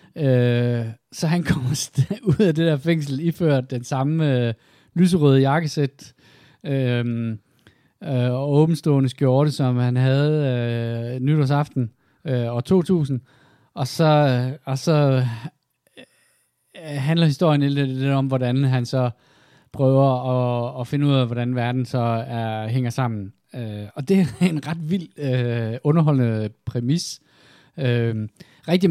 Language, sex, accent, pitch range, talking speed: Danish, male, native, 120-150 Hz, 135 wpm